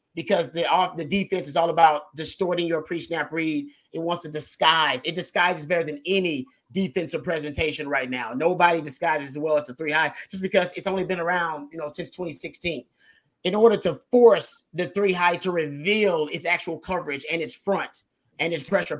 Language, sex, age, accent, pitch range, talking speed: English, male, 30-49, American, 160-195 Hz, 195 wpm